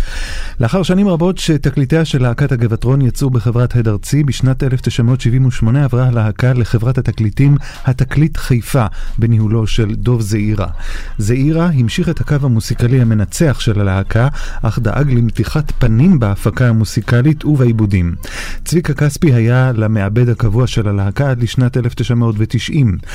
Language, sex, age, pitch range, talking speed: Hebrew, male, 30-49, 110-140 Hz, 125 wpm